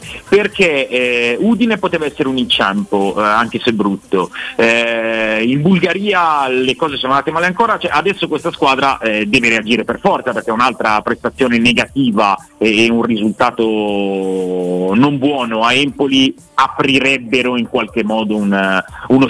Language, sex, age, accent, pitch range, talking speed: Italian, male, 40-59, native, 105-135 Hz, 150 wpm